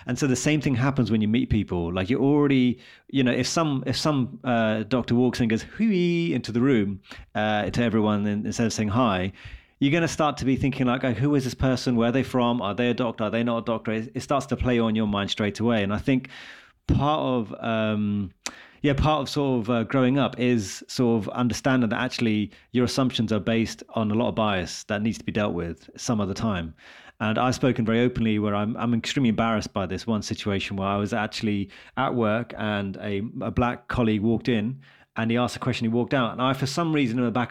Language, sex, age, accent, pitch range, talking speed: English, male, 30-49, British, 105-125 Hz, 245 wpm